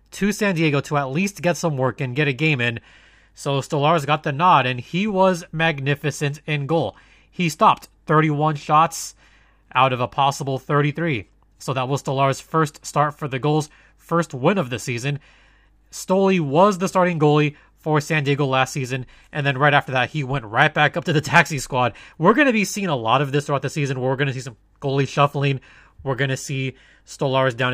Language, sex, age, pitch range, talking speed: English, male, 20-39, 130-160 Hz, 210 wpm